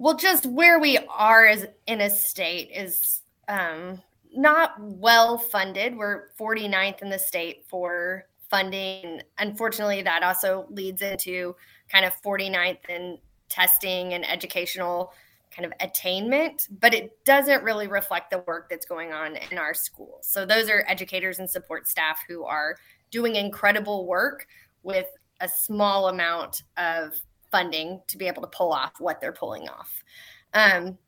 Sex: female